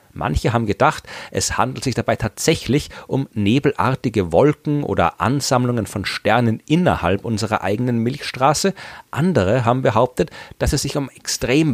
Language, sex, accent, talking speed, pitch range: German, male, German, 140 wpm, 100-135 Hz